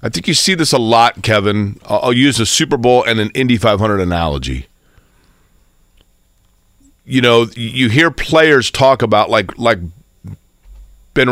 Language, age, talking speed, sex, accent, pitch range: English, 40-59, 150 wpm, male, American, 100-125 Hz